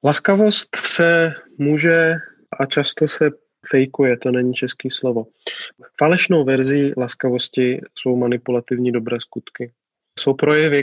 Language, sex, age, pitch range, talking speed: Czech, male, 30-49, 120-135 Hz, 110 wpm